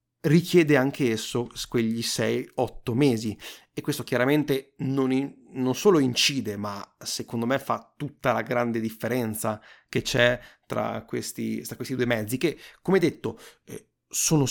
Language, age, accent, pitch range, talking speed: Italian, 30-49, native, 115-135 Hz, 130 wpm